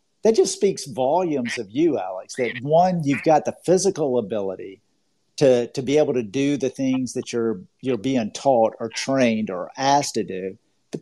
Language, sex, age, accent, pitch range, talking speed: English, male, 50-69, American, 125-185 Hz, 185 wpm